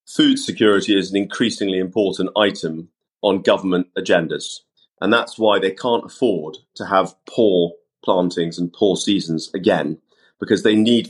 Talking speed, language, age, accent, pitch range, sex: 145 wpm, English, 30-49, British, 90-110 Hz, male